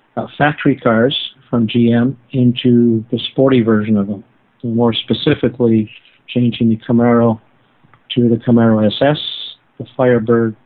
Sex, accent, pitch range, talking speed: male, American, 115-135 Hz, 125 wpm